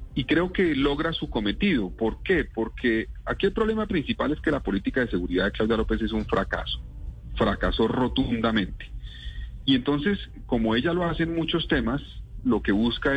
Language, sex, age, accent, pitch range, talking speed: Spanish, male, 40-59, Colombian, 95-140 Hz, 180 wpm